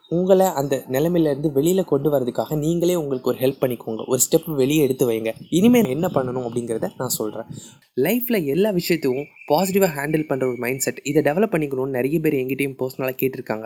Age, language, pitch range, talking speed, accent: 20-39, Tamil, 125-165 Hz, 170 wpm, native